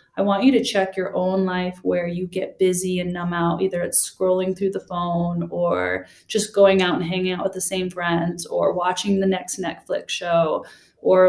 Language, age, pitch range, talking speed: English, 20-39, 175-205 Hz, 205 wpm